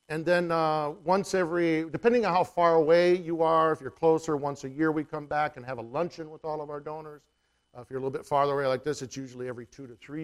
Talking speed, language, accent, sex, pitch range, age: 270 wpm, English, American, male, 120-155 Hz, 50-69